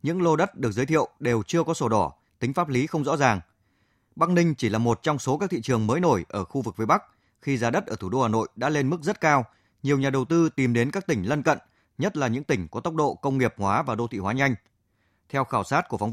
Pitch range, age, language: 110-145 Hz, 20-39, Vietnamese